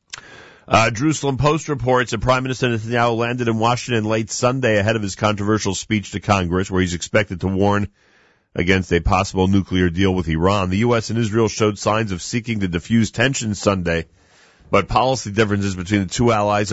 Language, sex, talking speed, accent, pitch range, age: English, male, 185 wpm, American, 90-110 Hz, 40-59